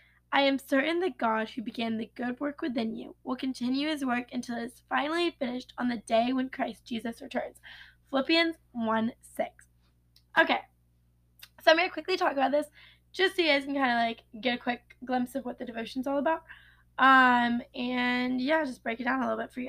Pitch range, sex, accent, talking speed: 240-305 Hz, female, American, 215 wpm